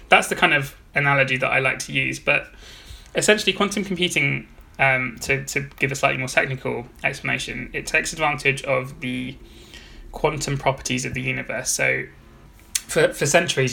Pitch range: 130-145 Hz